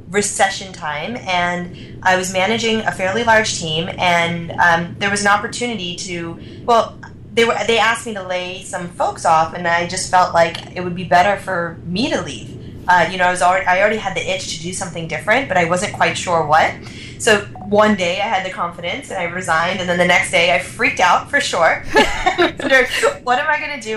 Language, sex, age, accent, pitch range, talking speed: English, female, 20-39, American, 170-205 Hz, 220 wpm